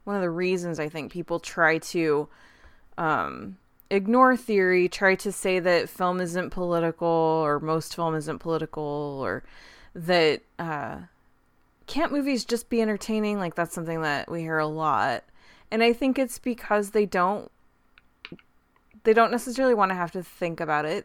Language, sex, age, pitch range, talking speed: English, female, 20-39, 160-230 Hz, 165 wpm